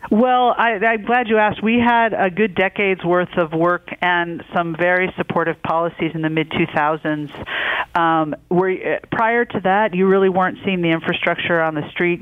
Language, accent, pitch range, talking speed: English, American, 155-185 Hz, 175 wpm